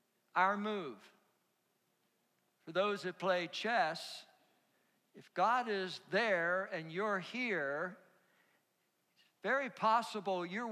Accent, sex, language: American, male, English